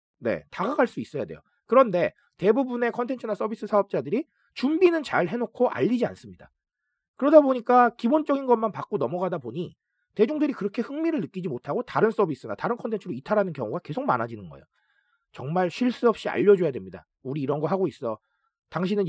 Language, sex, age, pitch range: Korean, male, 30-49, 175-250 Hz